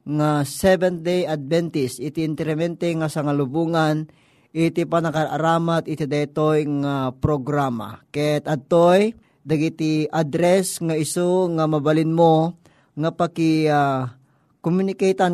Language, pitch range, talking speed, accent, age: Filipino, 145-170 Hz, 100 wpm, native, 20-39